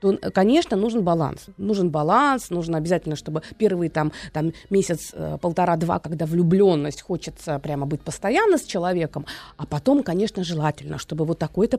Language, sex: Russian, female